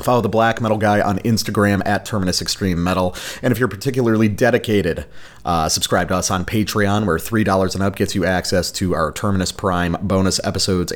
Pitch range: 85-105 Hz